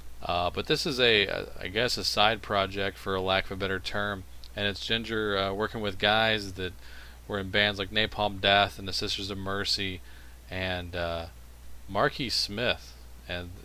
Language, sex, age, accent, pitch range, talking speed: English, male, 40-59, American, 85-105 Hz, 185 wpm